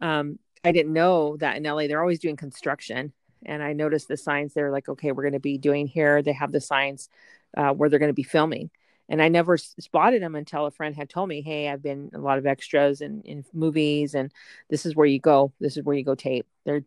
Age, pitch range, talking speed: 40-59, 140-160 Hz, 250 wpm